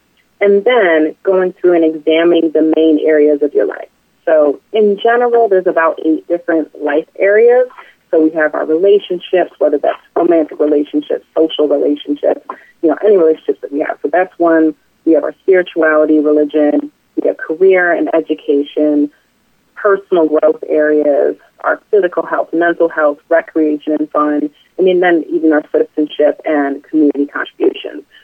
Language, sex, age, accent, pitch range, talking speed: English, female, 30-49, American, 150-200 Hz, 150 wpm